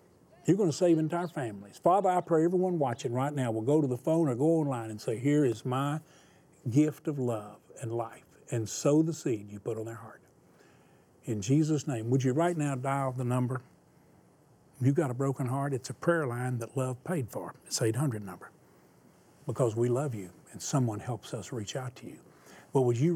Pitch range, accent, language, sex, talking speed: 110-145 Hz, American, English, male, 210 wpm